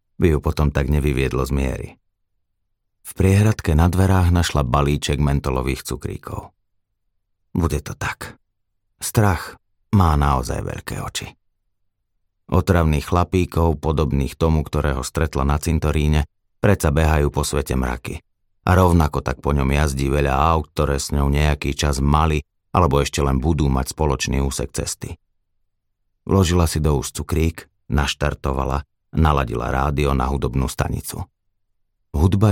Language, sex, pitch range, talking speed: Slovak, male, 70-95 Hz, 130 wpm